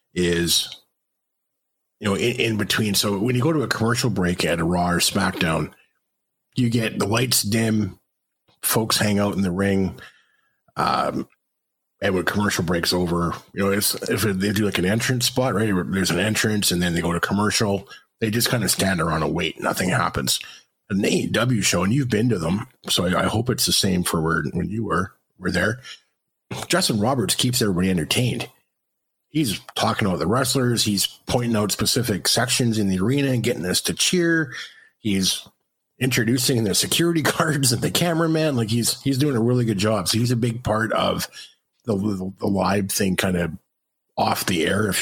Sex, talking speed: male, 190 wpm